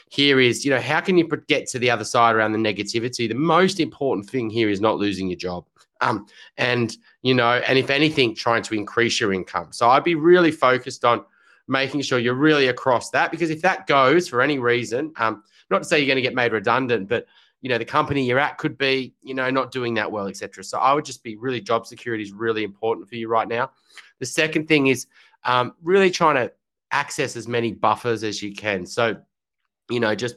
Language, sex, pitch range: English, male, 115-145 Hz